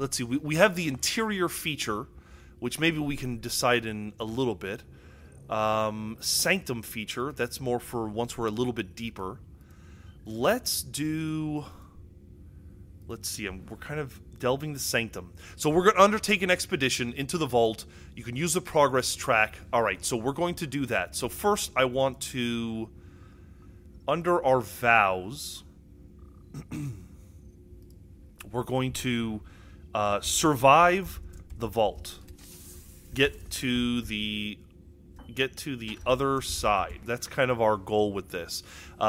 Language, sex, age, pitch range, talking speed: English, male, 20-39, 95-150 Hz, 145 wpm